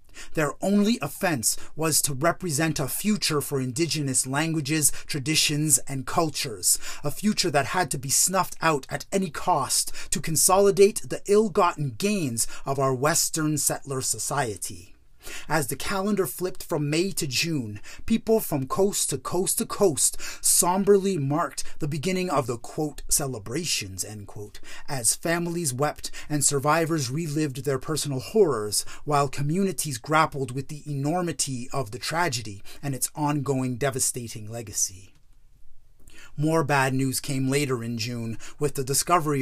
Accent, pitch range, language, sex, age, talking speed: American, 130-170 Hz, English, male, 30-49, 140 wpm